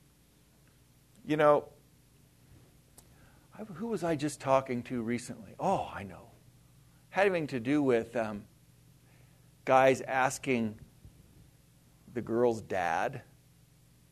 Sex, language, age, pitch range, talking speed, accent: male, English, 50-69, 115-155 Hz, 95 wpm, American